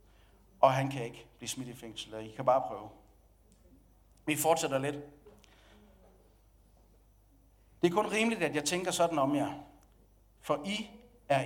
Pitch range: 120-170 Hz